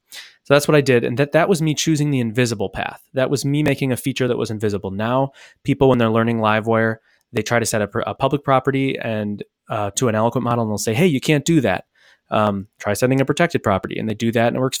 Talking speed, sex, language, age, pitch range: 260 wpm, male, English, 20-39, 110-140 Hz